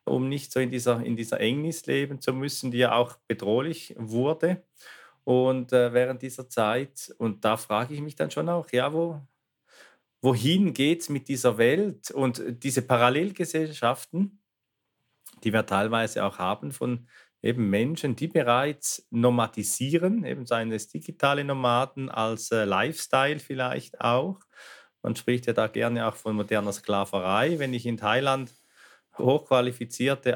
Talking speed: 145 wpm